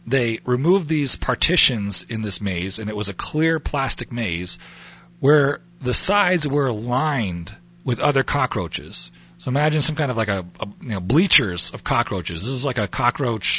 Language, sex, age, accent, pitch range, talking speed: English, male, 40-59, American, 100-155 Hz, 175 wpm